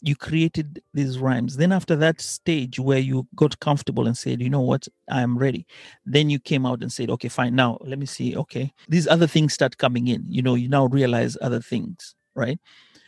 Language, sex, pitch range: Swahili, male, 130-165 Hz